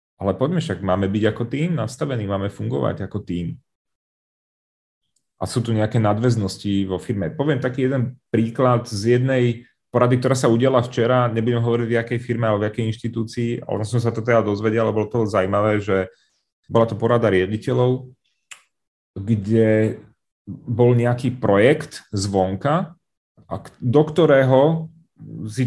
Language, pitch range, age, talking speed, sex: Czech, 105-130 Hz, 30-49, 145 wpm, male